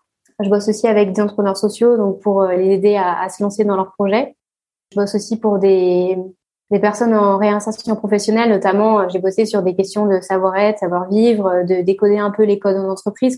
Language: French